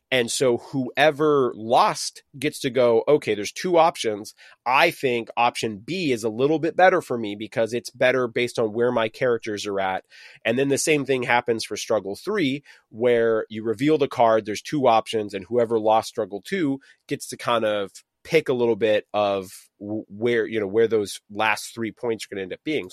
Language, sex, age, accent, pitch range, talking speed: English, male, 30-49, American, 115-150 Hz, 200 wpm